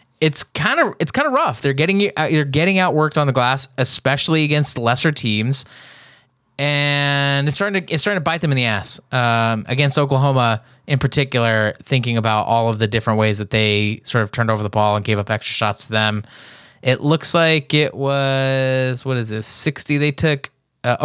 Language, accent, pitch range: English, American, 115-145 Hz